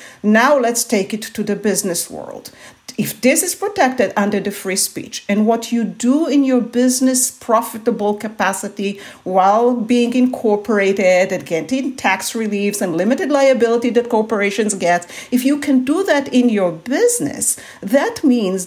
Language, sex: English, female